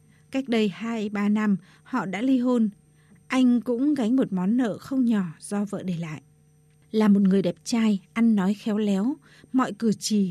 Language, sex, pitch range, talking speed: Vietnamese, female, 185-250 Hz, 185 wpm